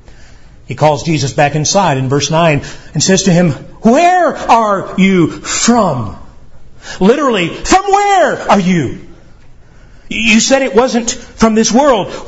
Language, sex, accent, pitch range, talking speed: English, male, American, 140-200 Hz, 135 wpm